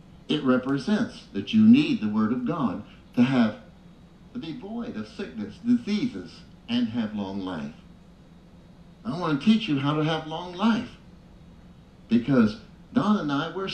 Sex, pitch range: male, 175-240 Hz